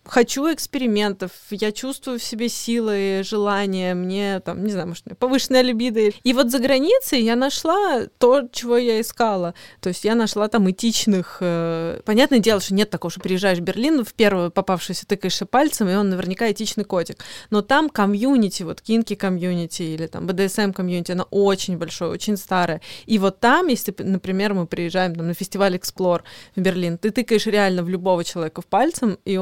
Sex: female